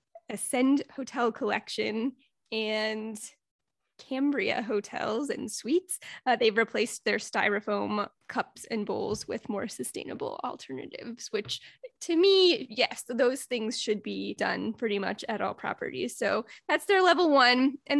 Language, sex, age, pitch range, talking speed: English, female, 10-29, 225-265 Hz, 135 wpm